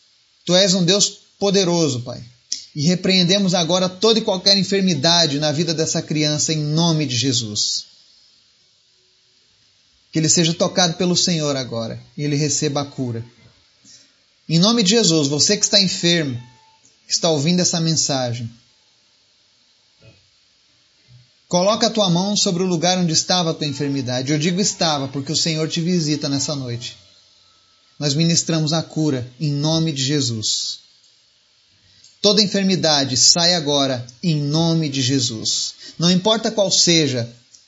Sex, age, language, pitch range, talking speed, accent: male, 30-49, Portuguese, 130-180 Hz, 140 wpm, Brazilian